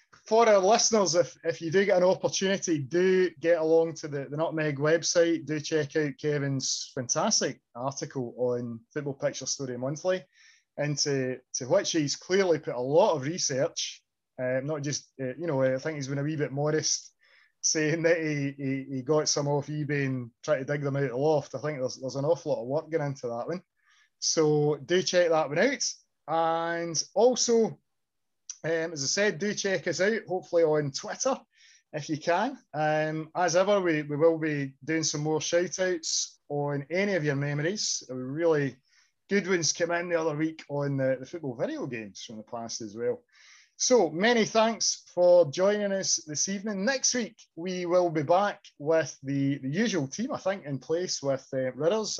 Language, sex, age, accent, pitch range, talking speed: English, male, 20-39, British, 140-180 Hz, 190 wpm